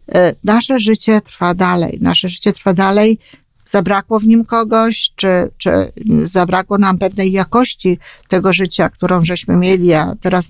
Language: Polish